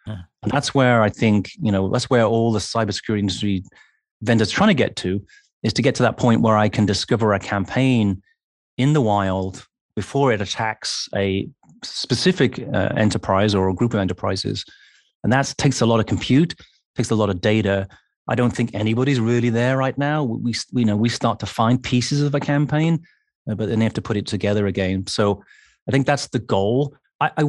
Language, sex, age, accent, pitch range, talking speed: English, male, 30-49, British, 100-125 Hz, 200 wpm